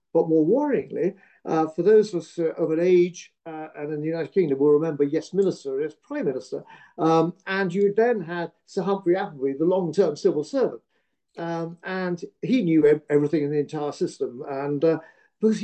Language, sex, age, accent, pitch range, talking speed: English, male, 50-69, British, 160-220 Hz, 180 wpm